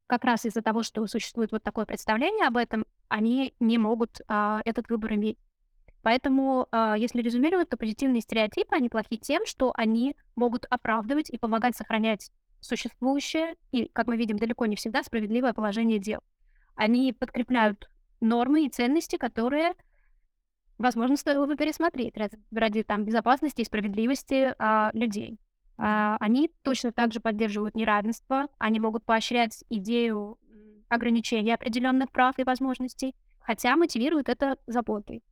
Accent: native